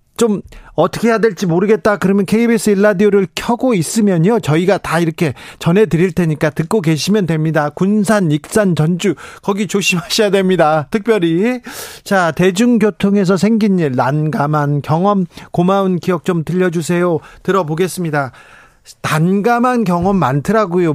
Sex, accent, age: male, native, 40-59